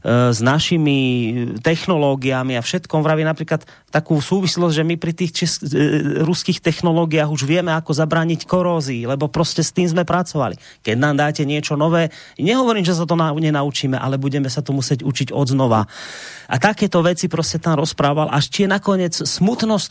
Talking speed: 165 wpm